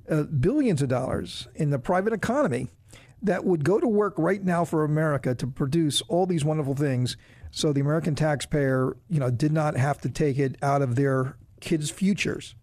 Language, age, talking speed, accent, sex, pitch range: English, 50-69, 190 wpm, American, male, 135-195 Hz